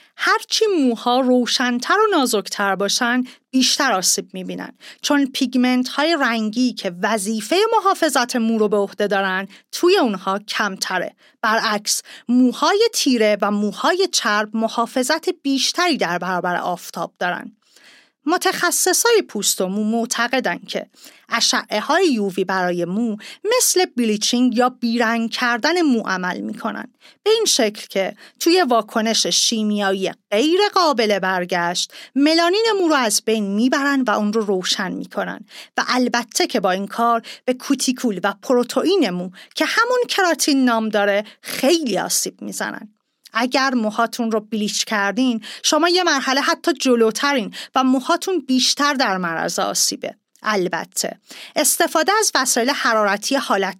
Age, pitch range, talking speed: 40-59, 210-300 Hz, 130 wpm